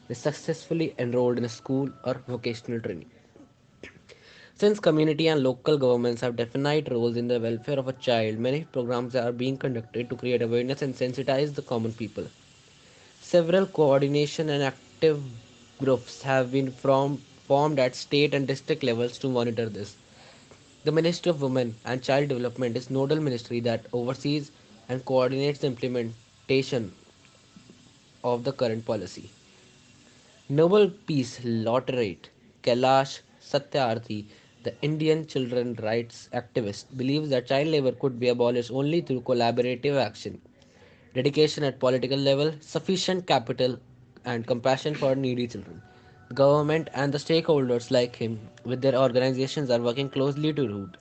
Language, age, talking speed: English, 10-29, 140 wpm